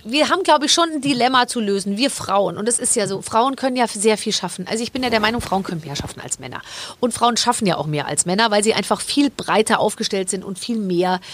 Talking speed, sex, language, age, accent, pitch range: 275 wpm, female, German, 40-59, German, 225-315 Hz